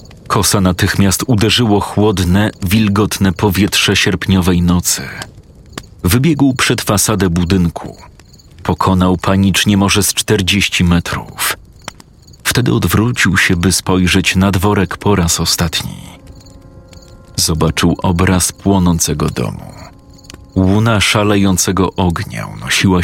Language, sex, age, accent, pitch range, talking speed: Polish, male, 40-59, native, 95-105 Hz, 95 wpm